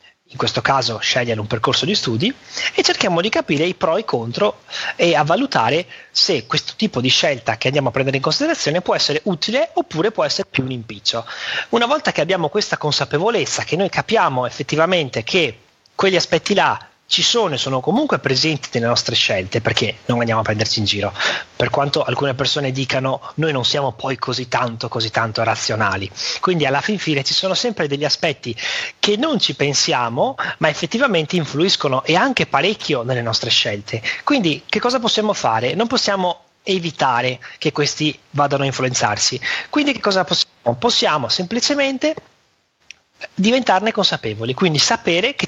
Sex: male